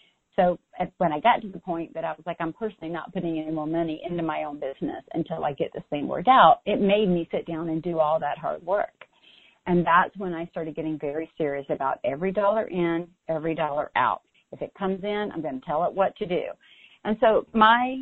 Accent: American